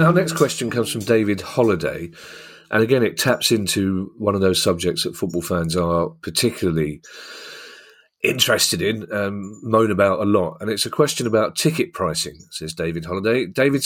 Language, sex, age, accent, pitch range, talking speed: English, male, 40-59, British, 95-115 Hz, 170 wpm